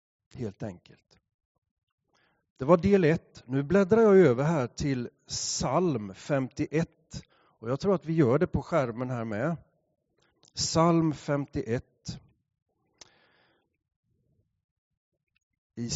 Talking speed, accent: 105 wpm, Swedish